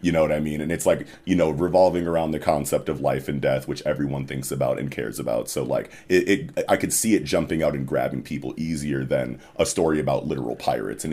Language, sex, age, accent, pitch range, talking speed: English, male, 30-49, American, 75-90 Hz, 250 wpm